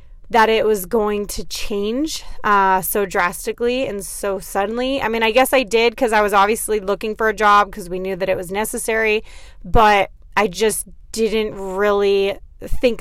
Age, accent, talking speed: 20-39, American, 180 wpm